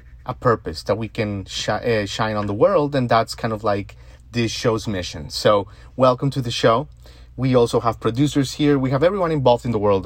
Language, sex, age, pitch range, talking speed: English, male, 30-49, 100-135 Hz, 210 wpm